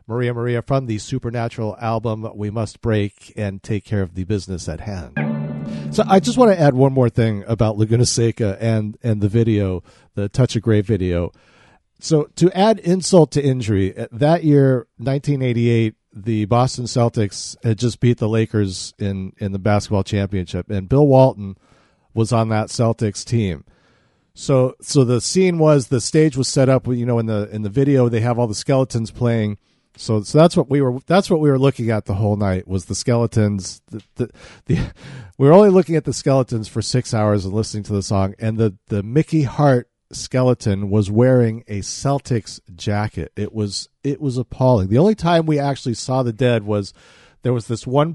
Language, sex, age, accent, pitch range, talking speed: English, male, 50-69, American, 105-130 Hz, 195 wpm